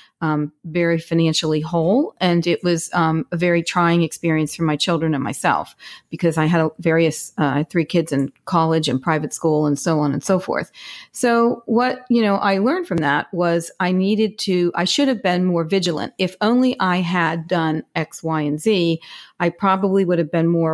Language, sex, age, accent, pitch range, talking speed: English, female, 40-59, American, 165-200 Hz, 195 wpm